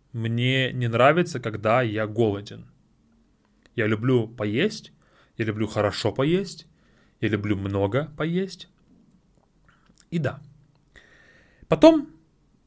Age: 30-49